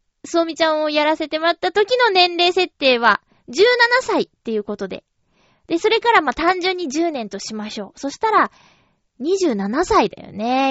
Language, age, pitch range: Japanese, 20-39, 225-365 Hz